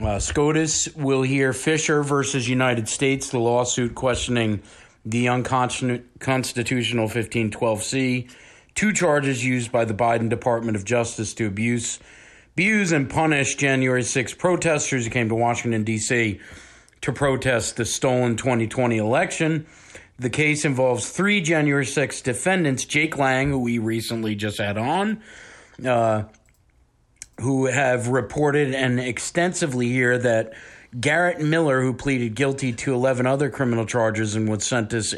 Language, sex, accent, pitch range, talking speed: English, male, American, 115-140 Hz, 135 wpm